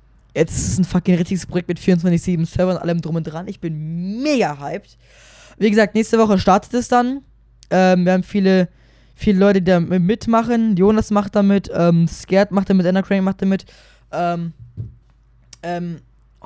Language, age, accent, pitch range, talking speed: German, 20-39, German, 165-205 Hz, 170 wpm